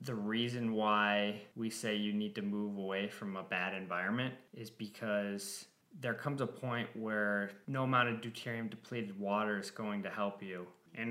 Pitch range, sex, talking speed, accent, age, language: 100-120 Hz, male, 180 wpm, American, 20-39, English